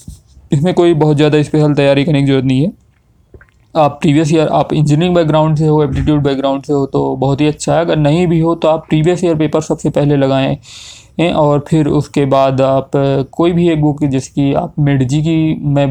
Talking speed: 205 wpm